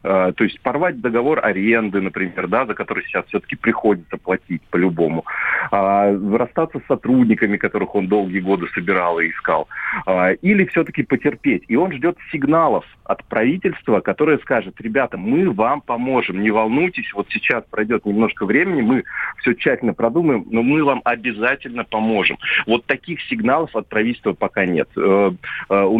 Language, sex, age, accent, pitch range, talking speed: Russian, male, 40-59, native, 100-140 Hz, 145 wpm